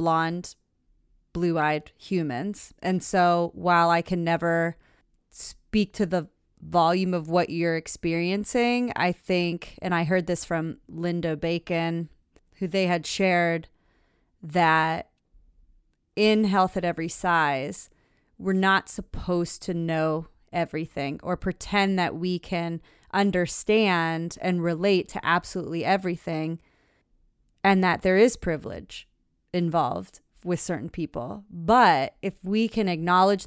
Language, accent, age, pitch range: English, American, 30-49, 170-210 Hz